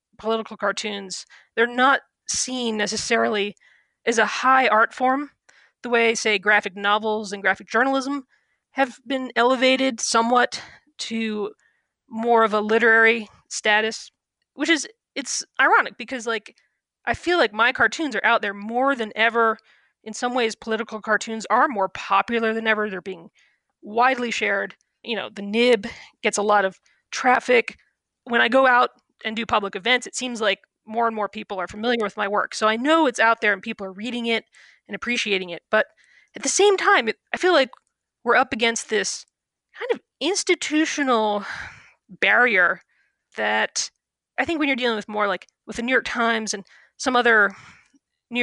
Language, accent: English, American